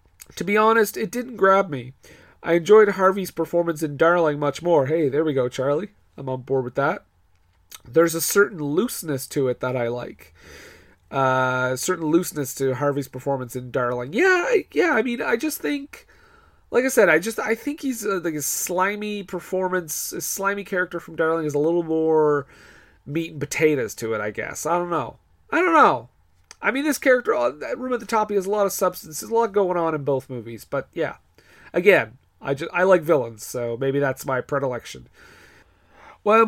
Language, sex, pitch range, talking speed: English, male, 140-210 Hz, 200 wpm